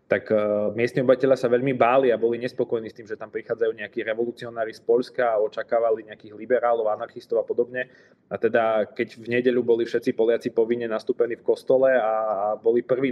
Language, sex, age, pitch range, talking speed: Slovak, male, 20-39, 110-135 Hz, 185 wpm